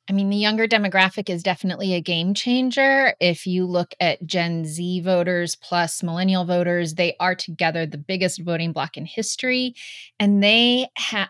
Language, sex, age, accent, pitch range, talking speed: English, female, 30-49, American, 175-210 Hz, 170 wpm